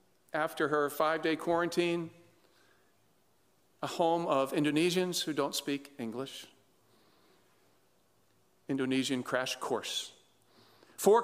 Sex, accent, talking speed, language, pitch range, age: male, American, 85 wpm, English, 140-175 Hz, 50-69